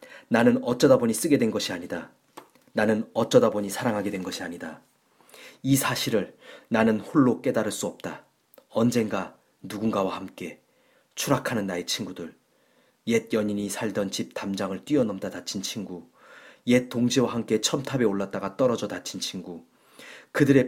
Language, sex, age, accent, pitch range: Korean, male, 30-49, native, 95-125 Hz